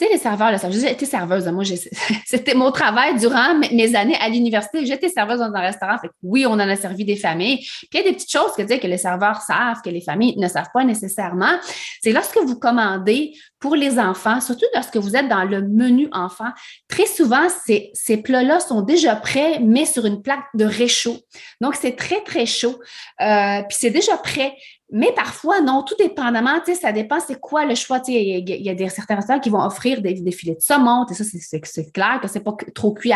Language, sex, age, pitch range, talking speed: French, female, 30-49, 205-265 Hz, 230 wpm